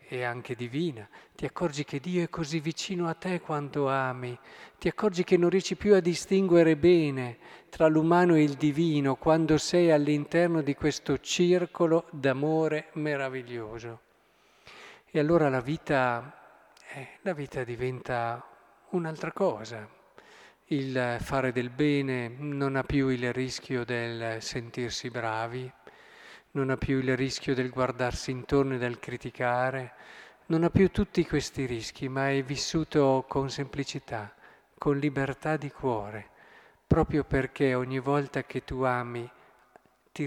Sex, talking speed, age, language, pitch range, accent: male, 135 wpm, 50-69, Italian, 125-155 Hz, native